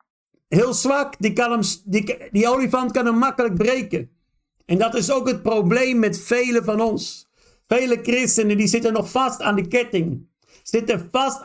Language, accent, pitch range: Dutch, Dutch, 195-245 Hz